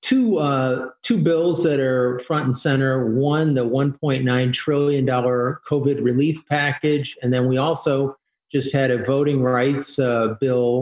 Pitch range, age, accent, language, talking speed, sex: 125-145 Hz, 40-59, American, English, 150 wpm, male